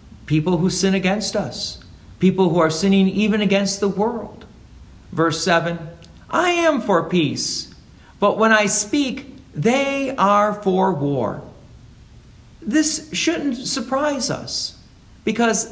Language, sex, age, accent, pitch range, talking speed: English, male, 50-69, American, 155-220 Hz, 120 wpm